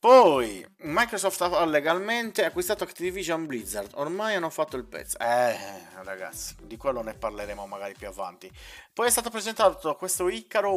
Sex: male